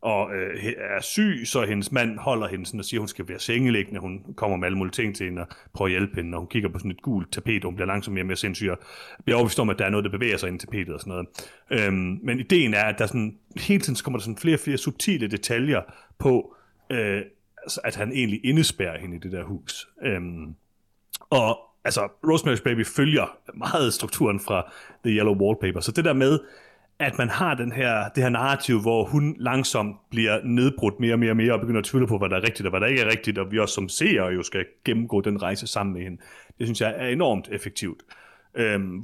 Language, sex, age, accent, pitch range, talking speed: Danish, male, 30-49, native, 95-120 Hz, 250 wpm